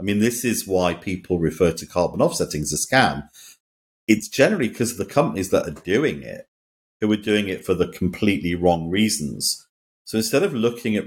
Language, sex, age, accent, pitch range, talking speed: English, male, 50-69, British, 80-110 Hz, 200 wpm